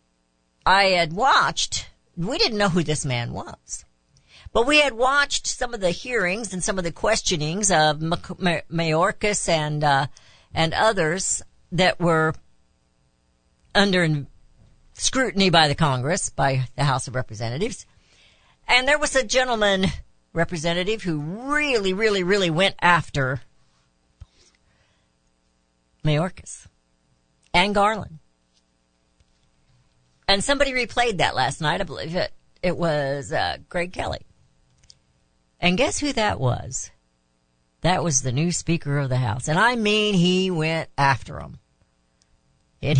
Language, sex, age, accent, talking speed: English, female, 60-79, American, 125 wpm